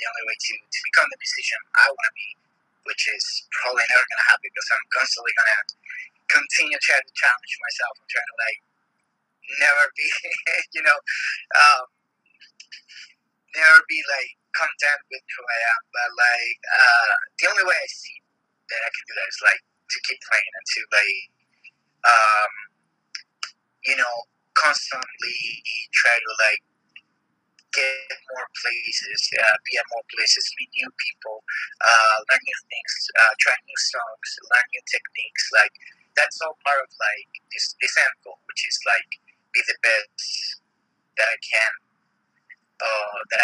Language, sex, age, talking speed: English, male, 30-49, 160 wpm